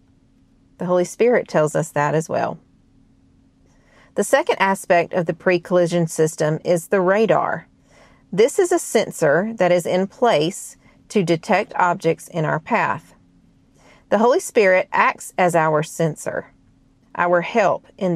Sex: female